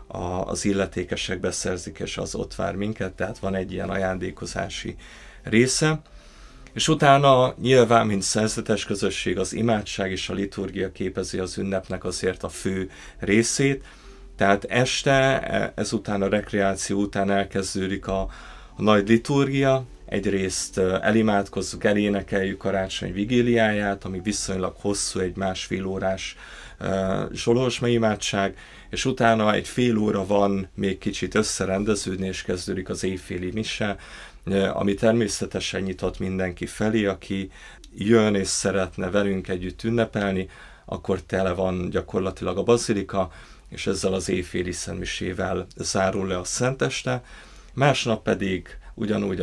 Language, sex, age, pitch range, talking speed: Hungarian, male, 30-49, 95-110 Hz, 120 wpm